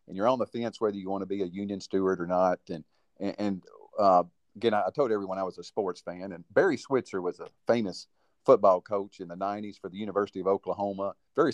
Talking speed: 235 wpm